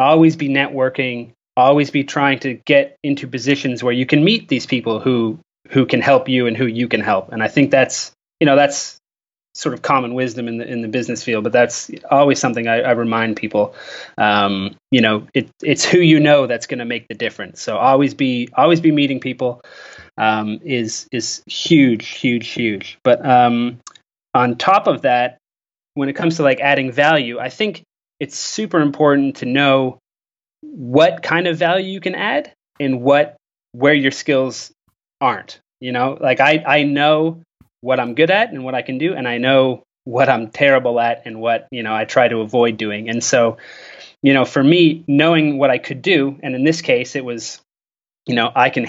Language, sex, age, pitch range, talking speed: English, male, 20-39, 120-145 Hz, 200 wpm